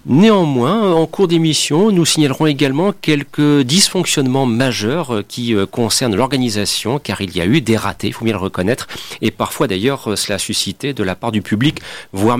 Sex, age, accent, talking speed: male, 40-59, French, 185 wpm